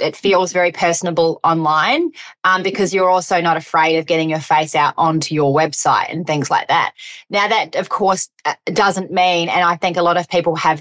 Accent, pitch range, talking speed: Australian, 155-195 Hz, 205 wpm